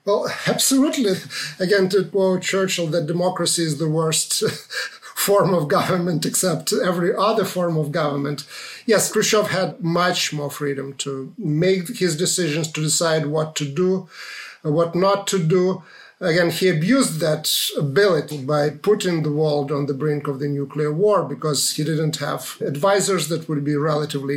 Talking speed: 160 wpm